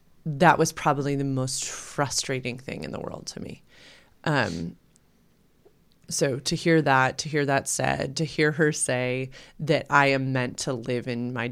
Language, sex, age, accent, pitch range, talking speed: English, female, 30-49, American, 130-165 Hz, 170 wpm